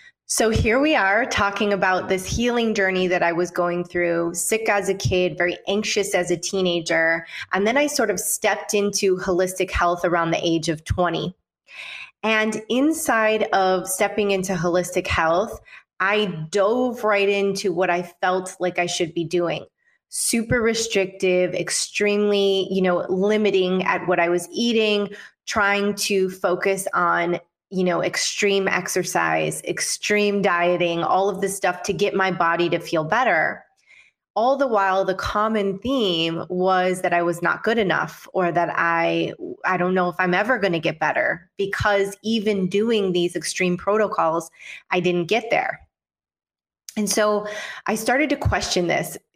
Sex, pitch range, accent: female, 175-205 Hz, American